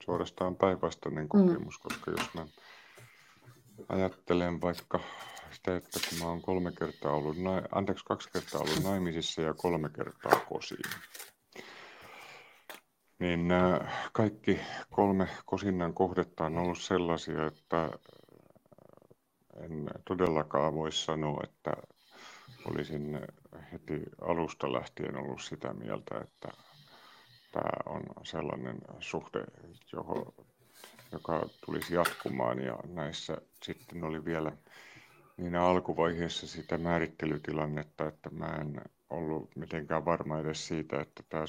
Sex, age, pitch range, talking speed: male, 50-69, 80-90 Hz, 105 wpm